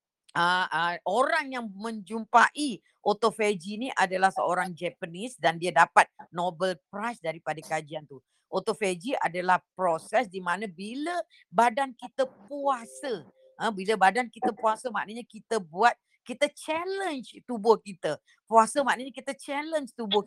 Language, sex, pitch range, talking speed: Indonesian, female, 185-260 Hz, 130 wpm